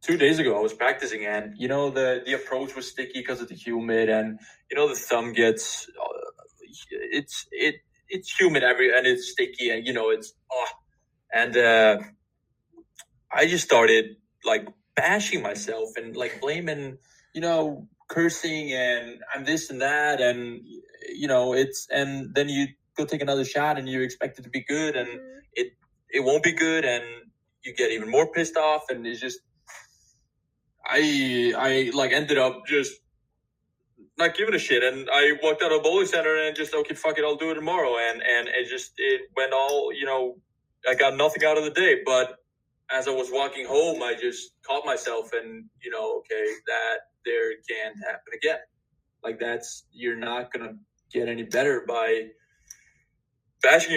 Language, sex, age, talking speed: English, male, 20-39, 180 wpm